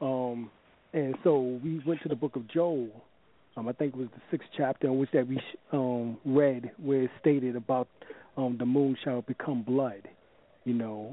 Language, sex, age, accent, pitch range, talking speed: English, male, 40-59, American, 120-140 Hz, 195 wpm